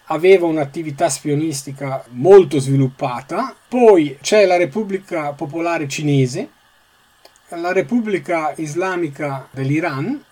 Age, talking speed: 40-59, 85 wpm